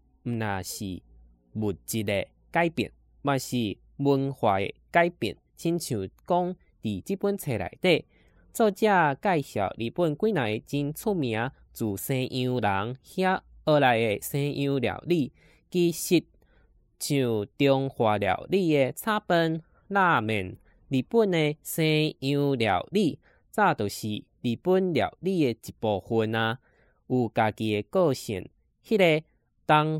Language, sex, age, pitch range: Chinese, male, 10-29, 110-170 Hz